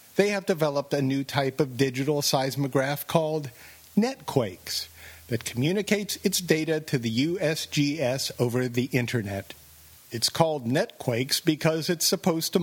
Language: English